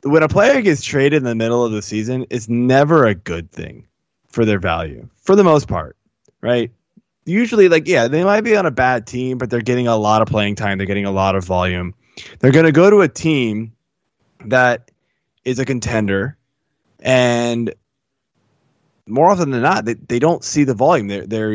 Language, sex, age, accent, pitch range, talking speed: English, male, 20-39, American, 105-140 Hz, 200 wpm